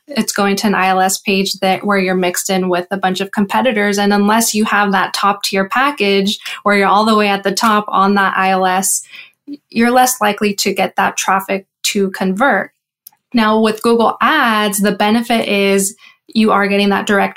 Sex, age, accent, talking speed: female, 10-29, American, 195 wpm